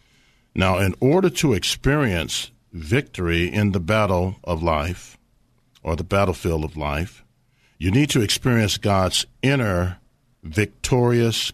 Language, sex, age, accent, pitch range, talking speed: English, male, 50-69, American, 85-120 Hz, 120 wpm